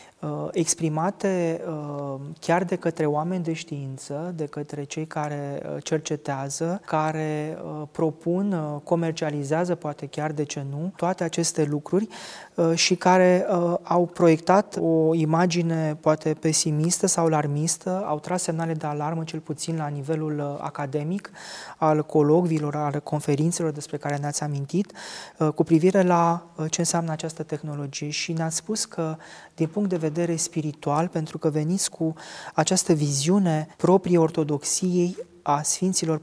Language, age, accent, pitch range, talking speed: Romanian, 20-39, native, 150-175 Hz, 130 wpm